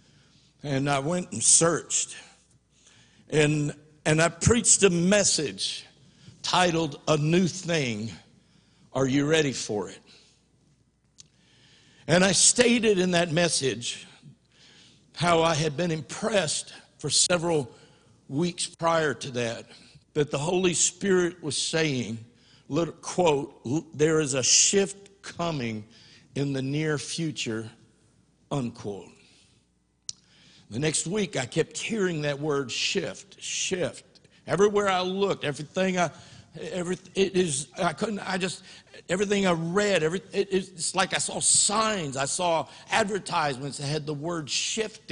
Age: 60-79